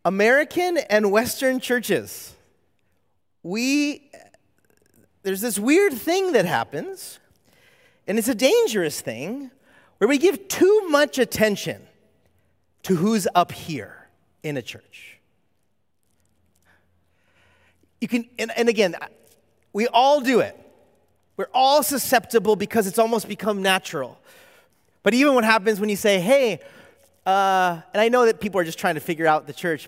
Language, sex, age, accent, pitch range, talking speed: English, male, 30-49, American, 185-290 Hz, 135 wpm